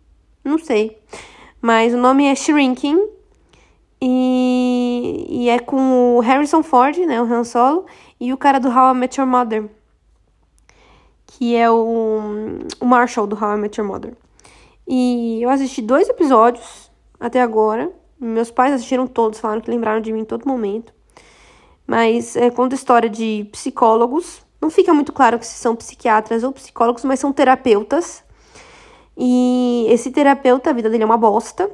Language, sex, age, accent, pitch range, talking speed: Portuguese, female, 10-29, Brazilian, 230-290 Hz, 160 wpm